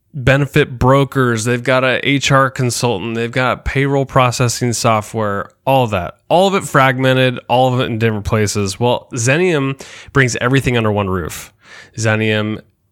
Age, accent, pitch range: 20-39, American, 105-130 Hz